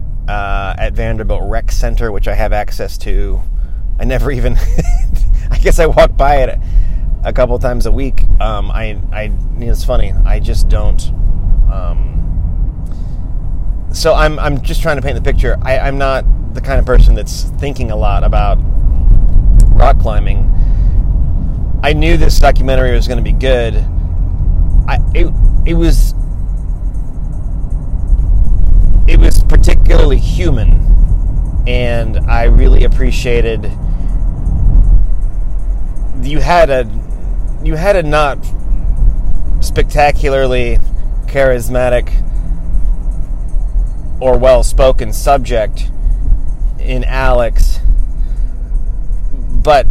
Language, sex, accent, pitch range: English, male, American, 85-125 Hz